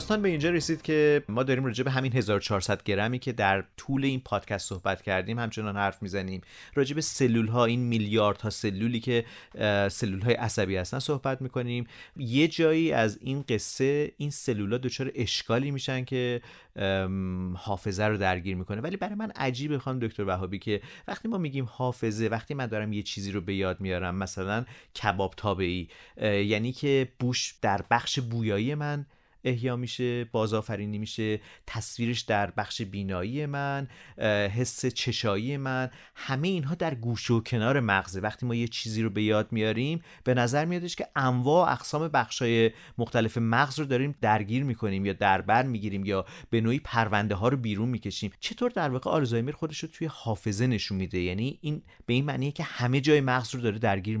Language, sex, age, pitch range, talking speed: Persian, male, 40-59, 105-135 Hz, 175 wpm